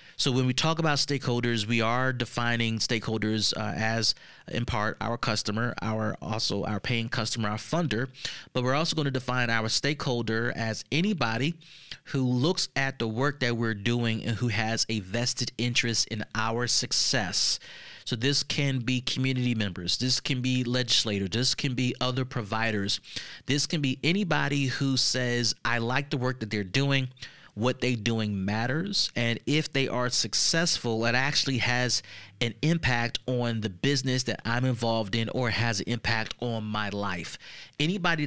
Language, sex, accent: English, male, American